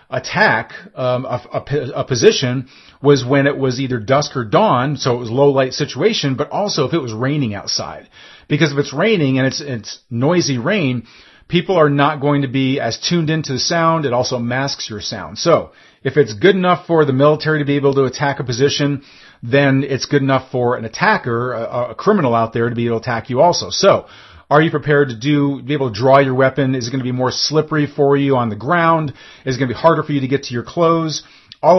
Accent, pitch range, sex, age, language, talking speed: American, 130-155 Hz, male, 40-59, English, 235 wpm